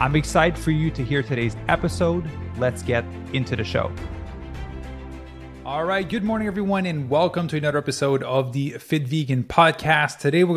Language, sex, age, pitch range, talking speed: English, male, 20-39, 125-145 Hz, 170 wpm